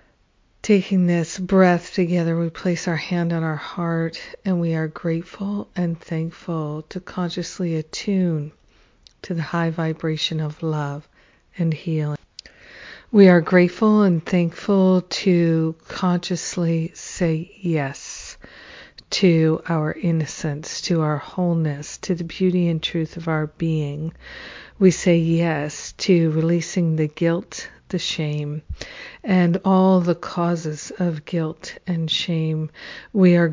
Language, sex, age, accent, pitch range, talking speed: English, female, 50-69, American, 160-180 Hz, 125 wpm